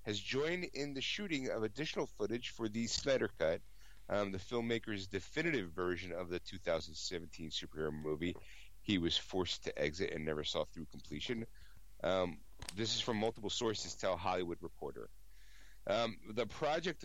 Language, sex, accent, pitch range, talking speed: English, male, American, 90-120 Hz, 155 wpm